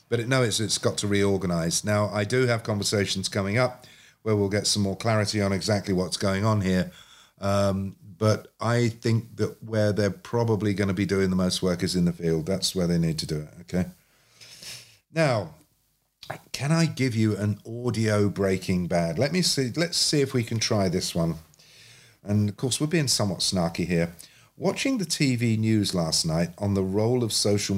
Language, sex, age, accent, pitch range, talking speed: English, male, 50-69, British, 95-125 Hz, 200 wpm